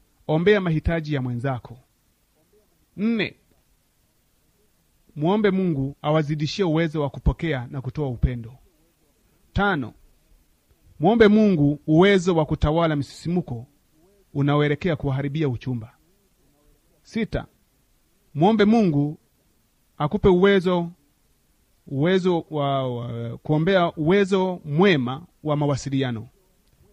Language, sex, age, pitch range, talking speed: Swahili, male, 30-49, 135-180 Hz, 80 wpm